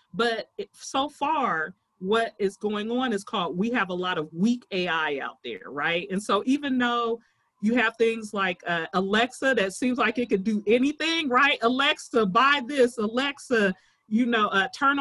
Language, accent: English, American